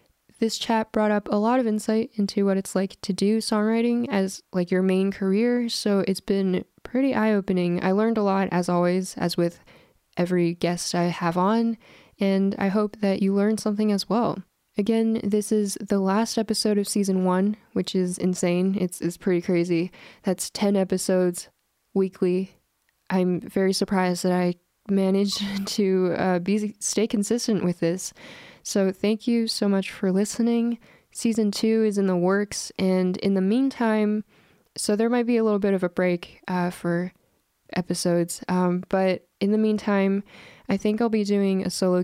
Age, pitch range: 10-29, 185-220 Hz